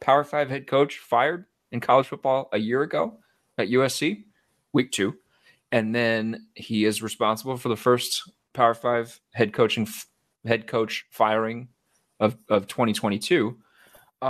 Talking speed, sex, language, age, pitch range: 140 wpm, male, English, 20-39, 105-125 Hz